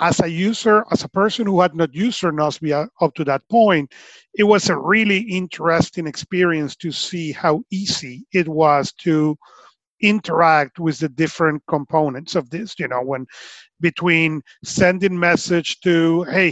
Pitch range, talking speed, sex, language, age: 150-185 Hz, 155 wpm, male, English, 40-59